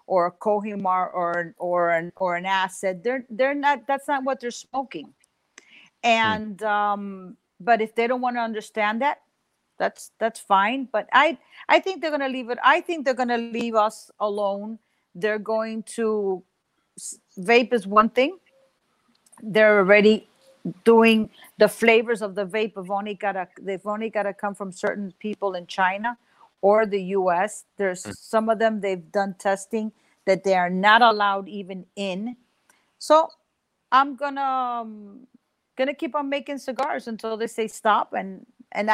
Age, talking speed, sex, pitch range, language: 50-69, 160 wpm, female, 200-250 Hz, English